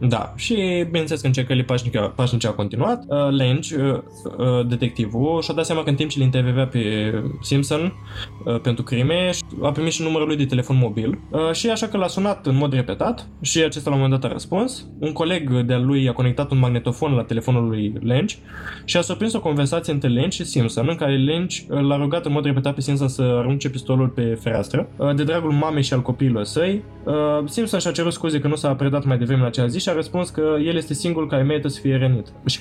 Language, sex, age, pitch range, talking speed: Romanian, male, 20-39, 125-155 Hz, 230 wpm